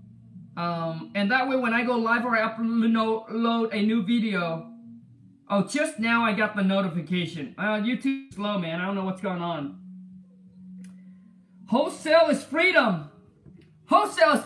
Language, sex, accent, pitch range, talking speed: English, male, American, 190-275 Hz, 150 wpm